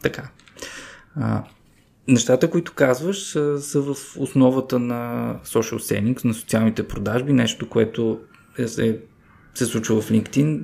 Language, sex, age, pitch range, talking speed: Bulgarian, male, 20-39, 105-135 Hz, 130 wpm